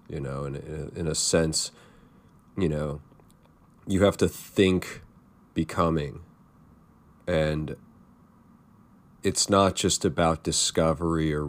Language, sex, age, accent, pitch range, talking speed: English, male, 30-49, American, 75-90 Hz, 105 wpm